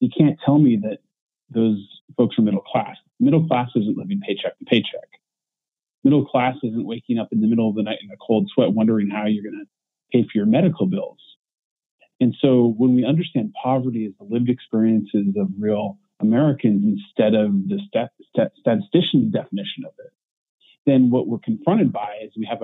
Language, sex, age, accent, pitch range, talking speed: English, male, 30-49, American, 110-160 Hz, 185 wpm